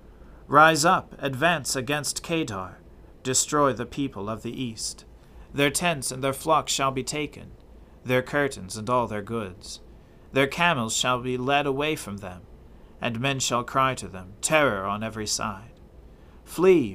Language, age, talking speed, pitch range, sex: English, 40-59, 155 wpm, 100-140 Hz, male